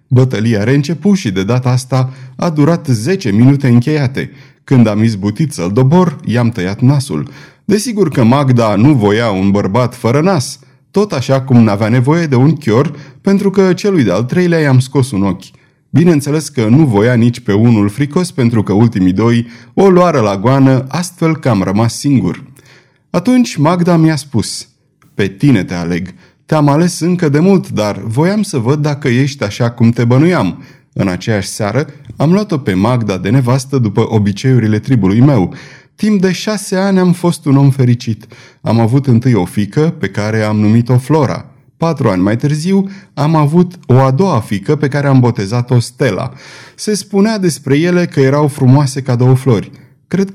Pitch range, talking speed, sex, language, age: 115-155 Hz, 175 wpm, male, Romanian, 30-49